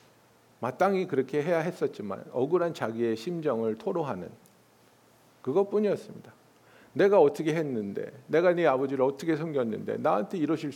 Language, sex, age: Korean, male, 50-69